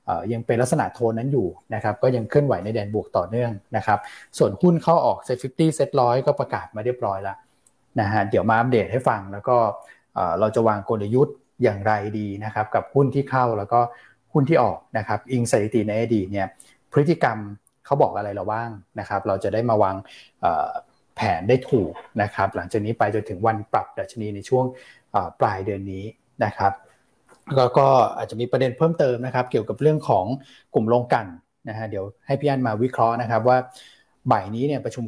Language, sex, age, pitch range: Thai, male, 20-39, 105-130 Hz